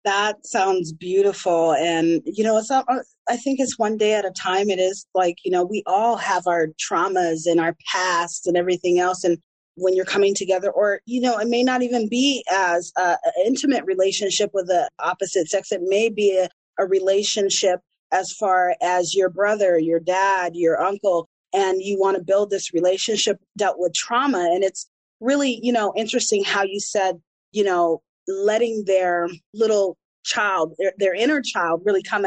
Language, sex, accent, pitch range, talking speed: English, female, American, 180-225 Hz, 185 wpm